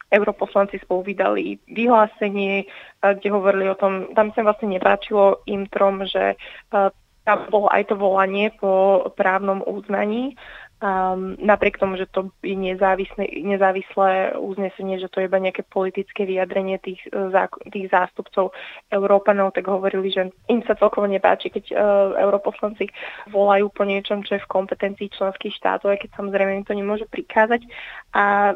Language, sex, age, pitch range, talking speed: Slovak, female, 20-39, 190-205 Hz, 140 wpm